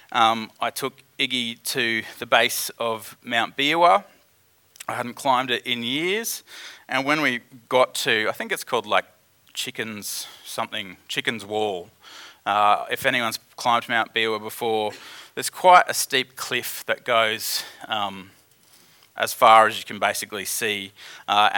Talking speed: 145 wpm